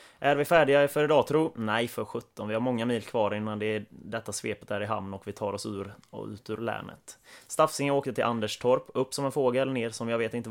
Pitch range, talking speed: 105-125 Hz, 250 wpm